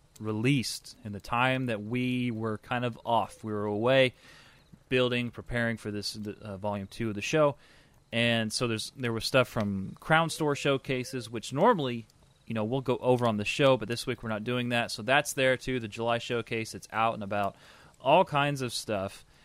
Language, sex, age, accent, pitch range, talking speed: English, male, 30-49, American, 115-135 Hz, 200 wpm